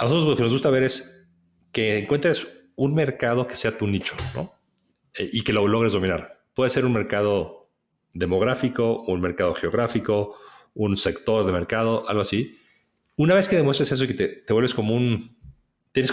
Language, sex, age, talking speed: Spanish, male, 40-59, 180 wpm